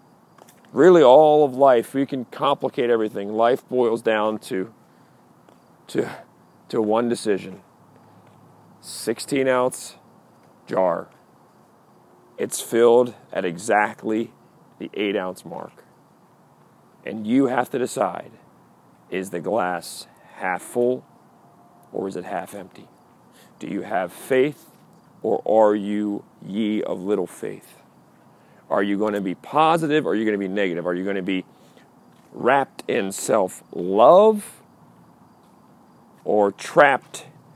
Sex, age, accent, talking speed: male, 40-59, American, 120 wpm